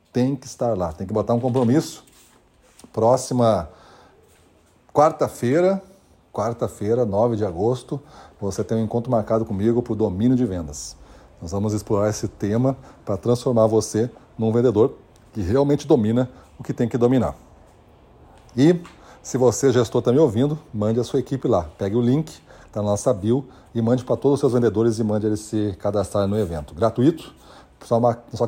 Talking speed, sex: 170 wpm, male